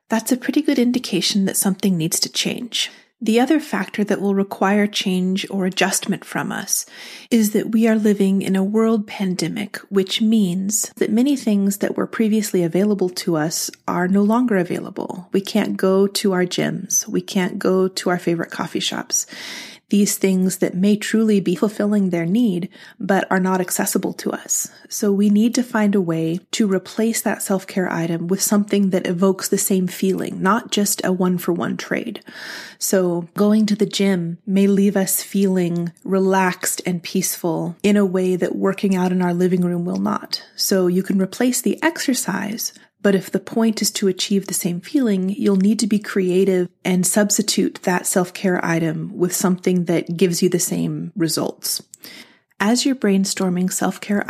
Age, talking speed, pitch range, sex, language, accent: 30-49, 180 wpm, 180-210 Hz, female, English, American